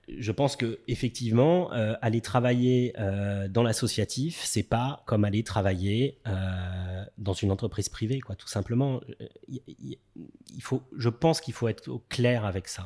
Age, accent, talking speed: 30-49, French, 145 wpm